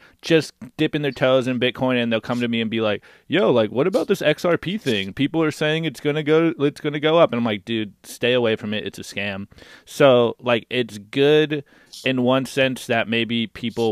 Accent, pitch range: American, 100-130 Hz